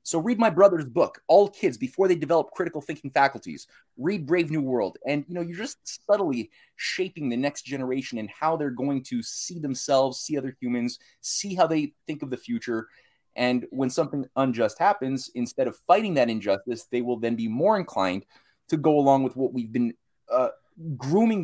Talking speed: 195 wpm